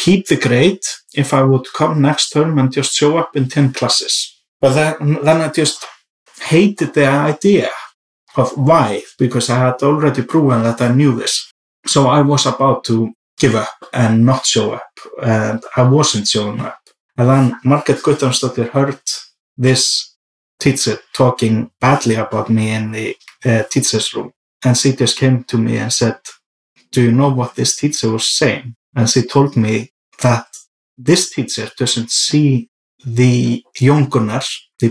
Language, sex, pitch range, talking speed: English, male, 120-145 Hz, 165 wpm